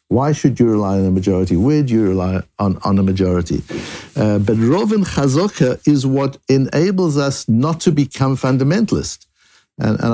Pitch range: 120-165 Hz